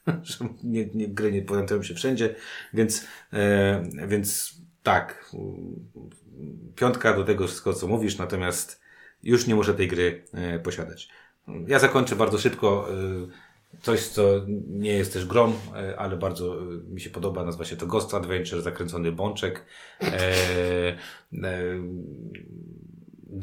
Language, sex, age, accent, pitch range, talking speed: Polish, male, 30-49, native, 95-110 Hz, 130 wpm